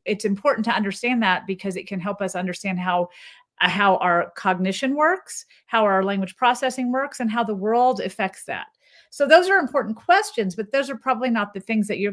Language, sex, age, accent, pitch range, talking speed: English, female, 40-59, American, 195-250 Hz, 205 wpm